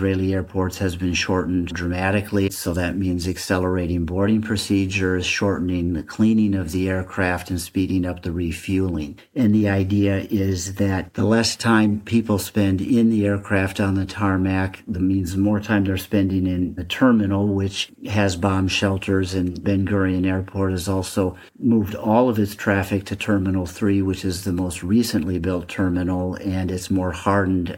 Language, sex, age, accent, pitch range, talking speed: English, male, 50-69, American, 90-100 Hz, 165 wpm